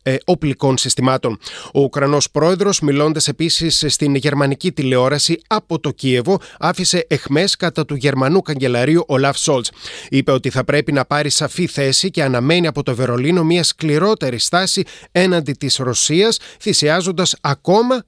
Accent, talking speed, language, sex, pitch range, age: native, 135 wpm, Greek, male, 135-175 Hz, 30-49